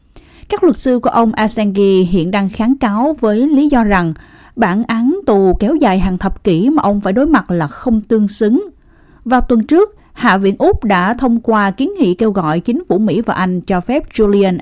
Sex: female